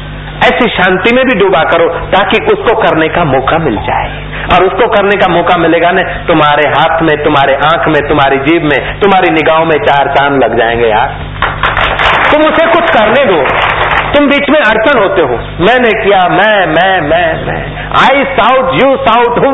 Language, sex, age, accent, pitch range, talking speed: Hindi, male, 50-69, native, 140-225 Hz, 180 wpm